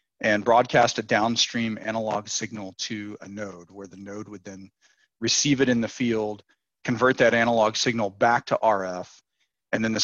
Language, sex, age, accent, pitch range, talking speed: English, male, 40-59, American, 105-120 Hz, 175 wpm